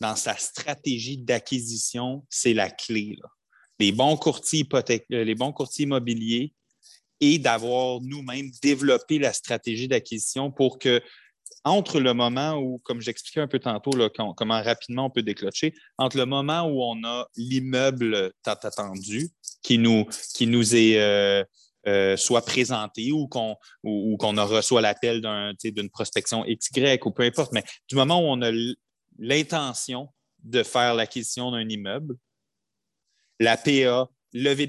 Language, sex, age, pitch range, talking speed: French, male, 30-49, 110-135 Hz, 150 wpm